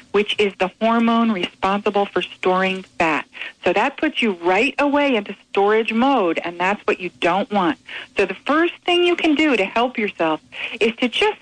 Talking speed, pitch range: 190 wpm, 190-260 Hz